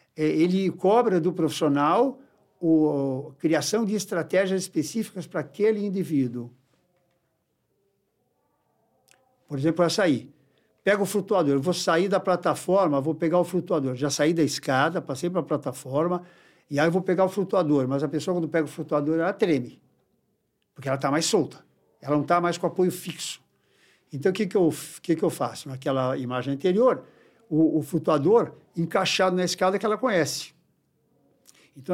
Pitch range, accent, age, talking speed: 145-180 Hz, Brazilian, 60-79, 150 wpm